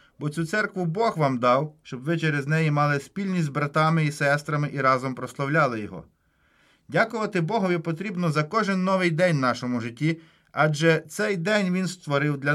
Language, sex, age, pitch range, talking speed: Ukrainian, male, 30-49, 140-190 Hz, 170 wpm